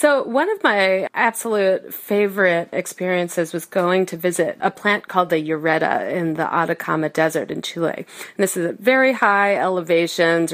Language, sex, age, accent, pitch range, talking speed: English, female, 30-49, American, 175-220 Hz, 165 wpm